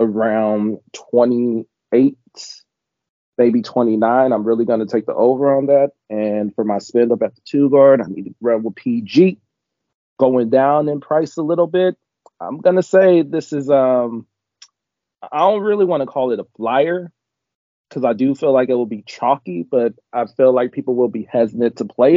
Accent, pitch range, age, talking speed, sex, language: American, 125-170 Hz, 30-49, 180 wpm, male, English